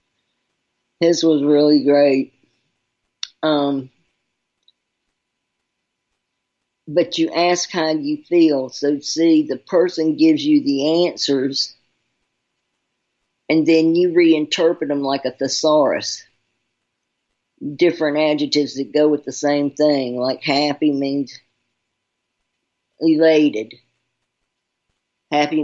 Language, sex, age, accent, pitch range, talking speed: English, female, 50-69, American, 130-160 Hz, 95 wpm